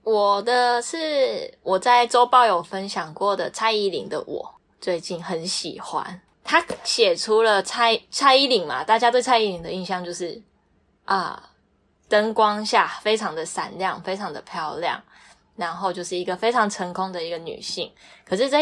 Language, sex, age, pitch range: Chinese, female, 10-29, 180-230 Hz